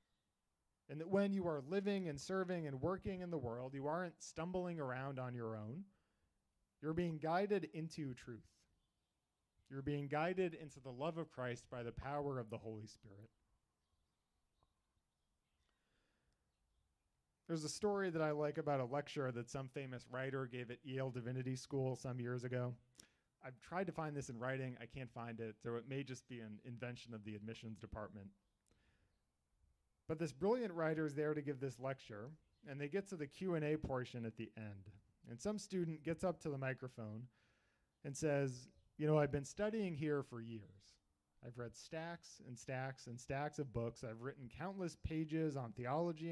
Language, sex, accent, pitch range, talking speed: English, male, American, 115-155 Hz, 175 wpm